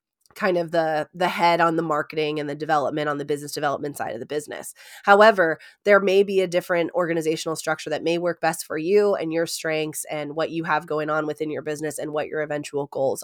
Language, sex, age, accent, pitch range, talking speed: English, female, 20-39, American, 155-190 Hz, 225 wpm